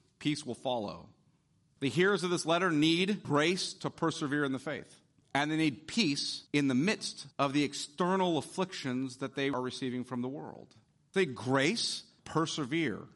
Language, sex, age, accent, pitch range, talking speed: English, male, 40-59, American, 135-180 Hz, 165 wpm